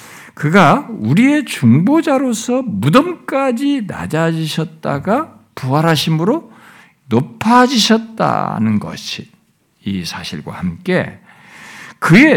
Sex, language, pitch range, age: male, Korean, 165-270 Hz, 60-79